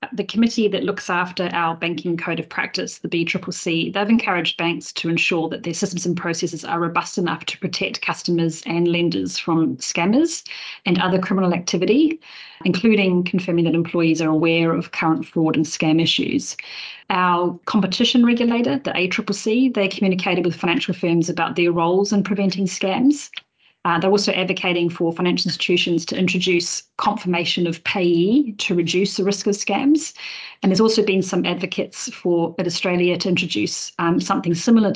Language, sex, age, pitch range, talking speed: English, female, 30-49, 170-195 Hz, 165 wpm